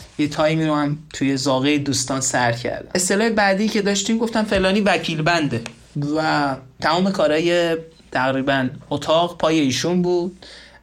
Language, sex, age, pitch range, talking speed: Persian, male, 30-49, 140-175 Hz, 140 wpm